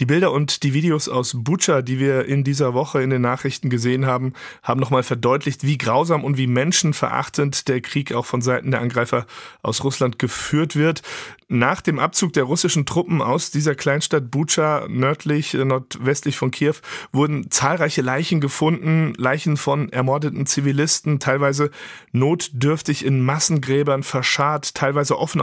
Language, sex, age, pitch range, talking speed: German, male, 40-59, 125-150 Hz, 155 wpm